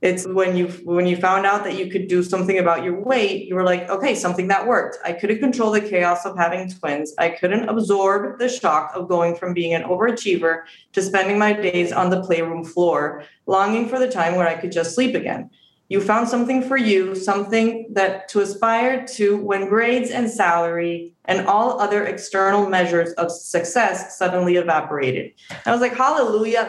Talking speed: 195 wpm